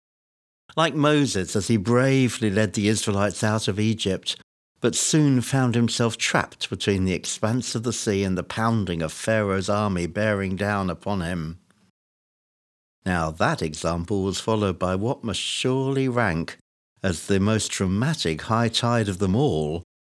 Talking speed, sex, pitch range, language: 155 wpm, male, 90-125 Hz, English